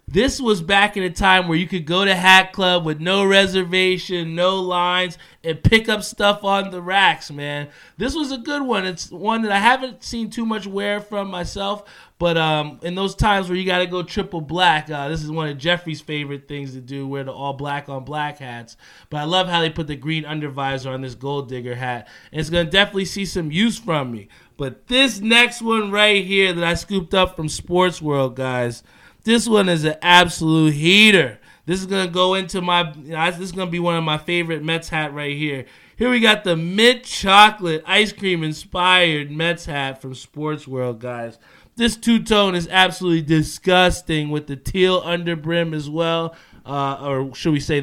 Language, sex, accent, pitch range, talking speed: English, male, American, 145-190 Hz, 210 wpm